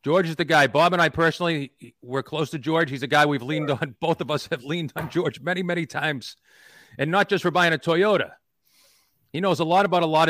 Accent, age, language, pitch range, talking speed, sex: American, 40-59, English, 130-175 Hz, 245 wpm, male